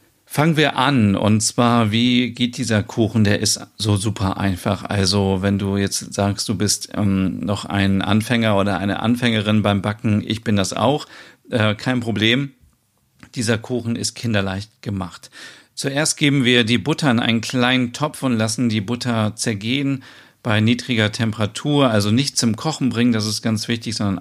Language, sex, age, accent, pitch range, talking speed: German, male, 40-59, German, 105-125 Hz, 170 wpm